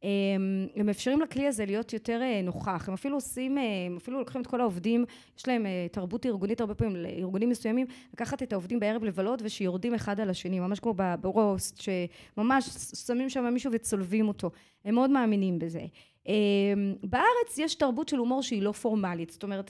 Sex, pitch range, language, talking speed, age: female, 200-260 Hz, Hebrew, 170 wpm, 20-39